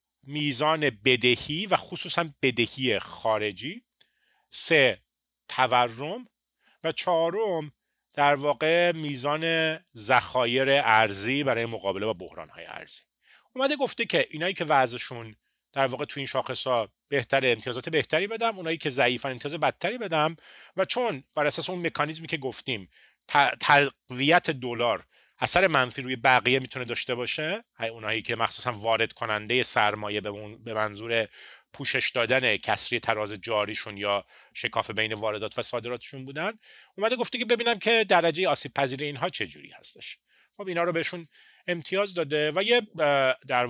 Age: 40-59